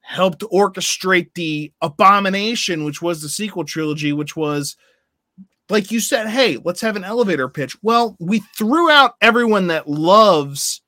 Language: English